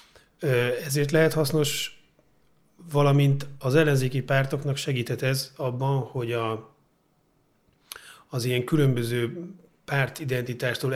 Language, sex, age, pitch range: Hungarian, male, 30-49, 115-140 Hz